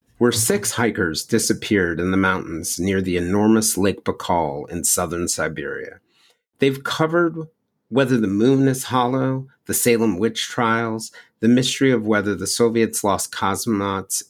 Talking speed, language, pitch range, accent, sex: 145 wpm, English, 100-130 Hz, American, male